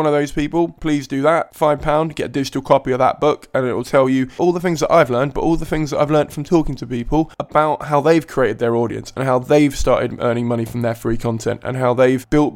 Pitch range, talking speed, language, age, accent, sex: 120-160 Hz, 270 wpm, English, 20-39, British, male